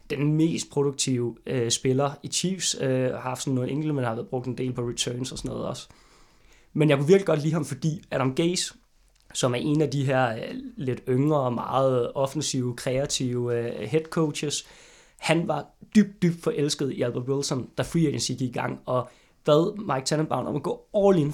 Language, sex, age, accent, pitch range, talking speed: Danish, male, 20-39, native, 135-165 Hz, 195 wpm